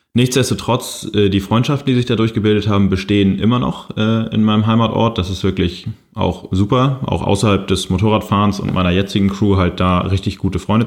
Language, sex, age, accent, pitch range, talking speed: German, male, 20-39, German, 90-105 Hz, 180 wpm